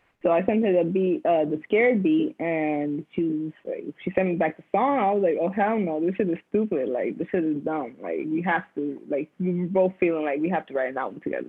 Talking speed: 270 wpm